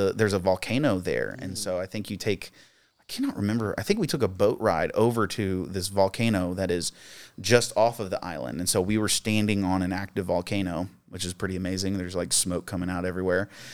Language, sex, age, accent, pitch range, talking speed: English, male, 30-49, American, 95-115 Hz, 220 wpm